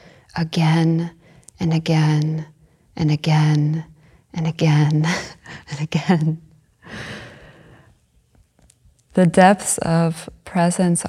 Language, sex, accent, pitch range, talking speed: English, female, American, 150-180 Hz, 70 wpm